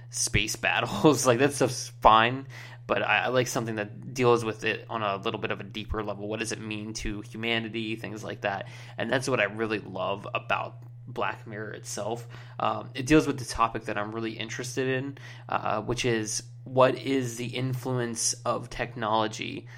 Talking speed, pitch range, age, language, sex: 190 wpm, 110-125 Hz, 20-39, English, male